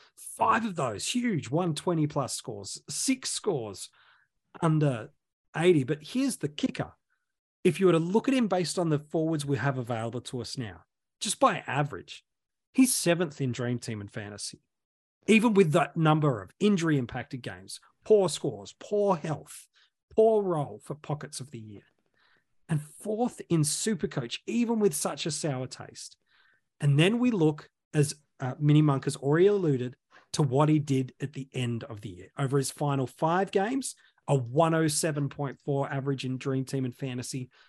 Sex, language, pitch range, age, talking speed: male, English, 130-180 Hz, 30-49, 165 wpm